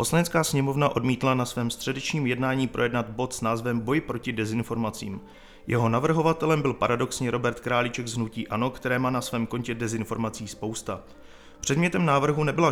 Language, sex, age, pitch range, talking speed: Czech, male, 30-49, 115-135 Hz, 155 wpm